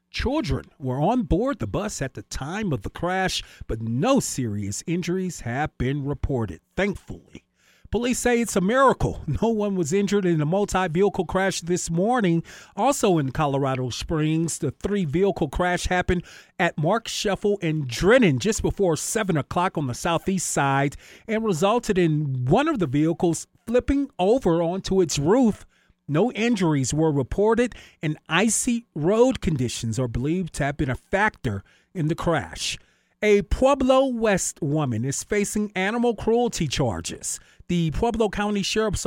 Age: 40-59